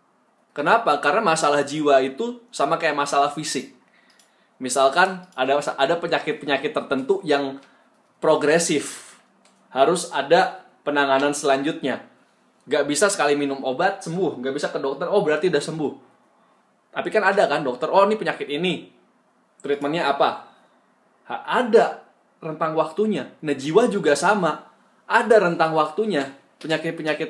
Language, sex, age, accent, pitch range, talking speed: Indonesian, male, 20-39, native, 145-190 Hz, 125 wpm